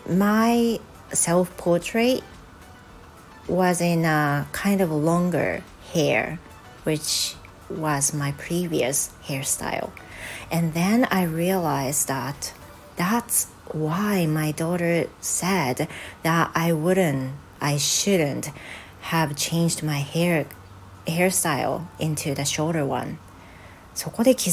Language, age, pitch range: Japanese, 40-59, 140-180 Hz